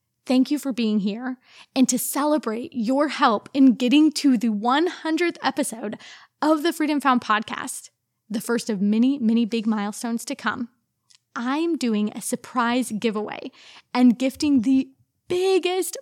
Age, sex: 20-39, female